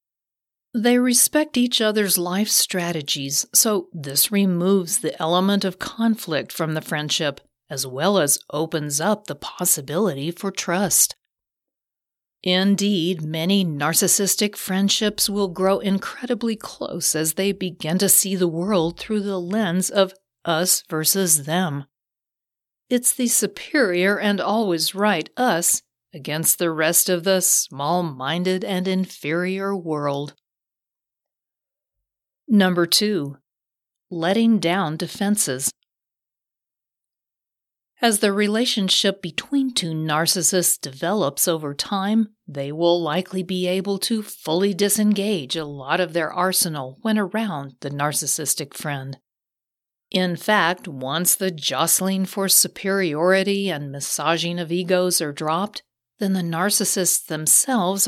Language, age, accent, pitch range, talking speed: English, 40-59, American, 155-200 Hz, 115 wpm